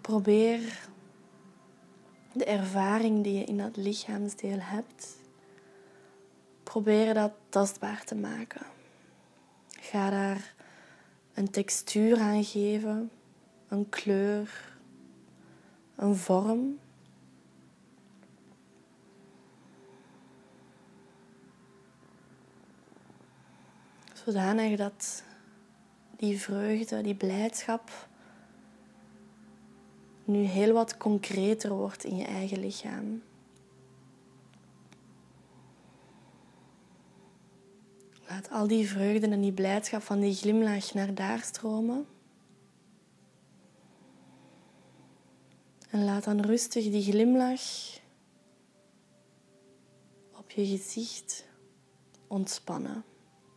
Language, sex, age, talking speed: Dutch, female, 20-39, 70 wpm